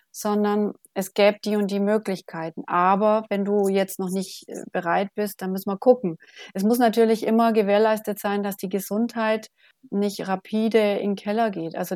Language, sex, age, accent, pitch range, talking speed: German, female, 30-49, German, 185-215 Hz, 175 wpm